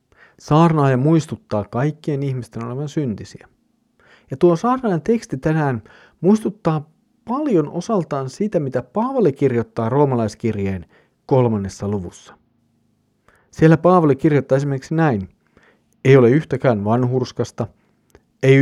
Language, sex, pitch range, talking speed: Finnish, male, 115-150 Hz, 100 wpm